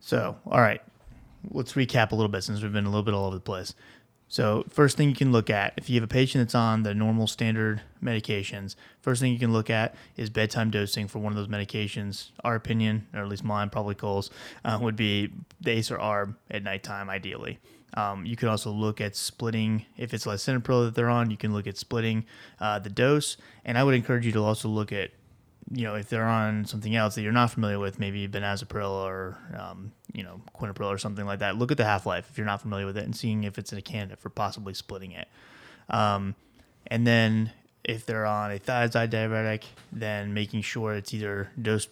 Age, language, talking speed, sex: 20-39, English, 225 wpm, male